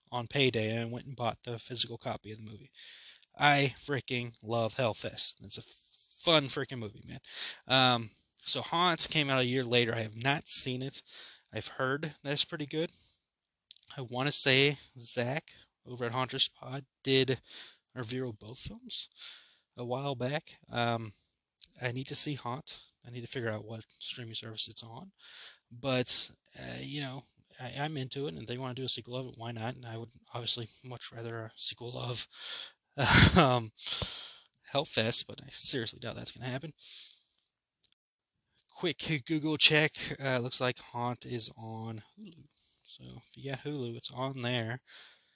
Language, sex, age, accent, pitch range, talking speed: English, male, 20-39, American, 115-140 Hz, 170 wpm